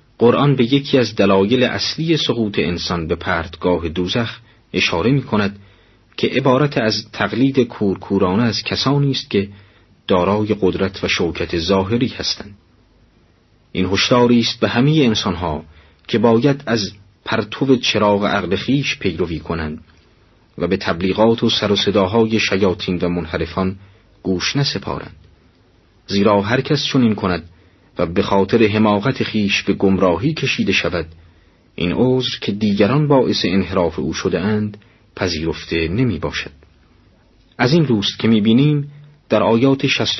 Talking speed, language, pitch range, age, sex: 130 wpm, Persian, 90-120 Hz, 40-59, male